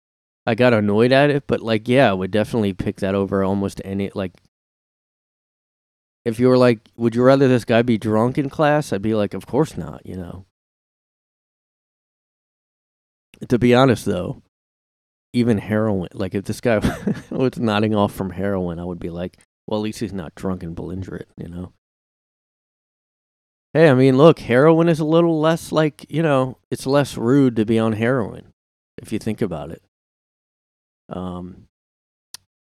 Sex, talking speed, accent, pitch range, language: male, 170 wpm, American, 95-120 Hz, English